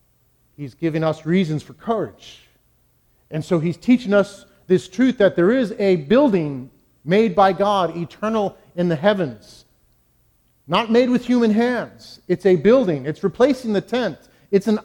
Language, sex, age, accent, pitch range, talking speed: English, male, 40-59, American, 155-205 Hz, 160 wpm